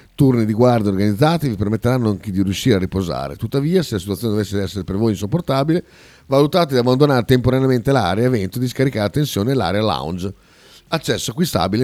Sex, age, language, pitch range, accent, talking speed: male, 40-59, Italian, 100-140 Hz, native, 175 wpm